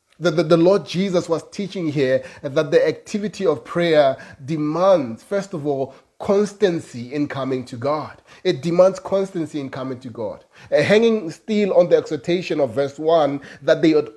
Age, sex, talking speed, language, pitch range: 30-49, male, 175 wpm, English, 135-175 Hz